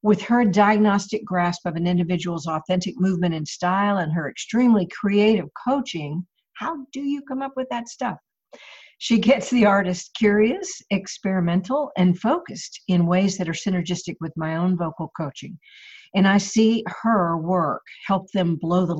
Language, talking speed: English, 160 wpm